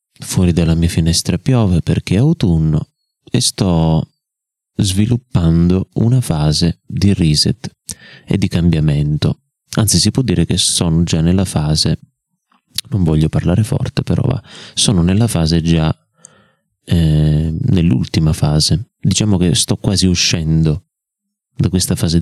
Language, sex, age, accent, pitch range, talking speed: Italian, male, 30-49, native, 80-105 Hz, 130 wpm